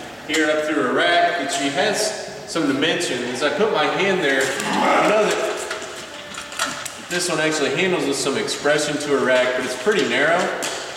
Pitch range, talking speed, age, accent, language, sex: 150-175 Hz, 180 wpm, 20-39, American, English, male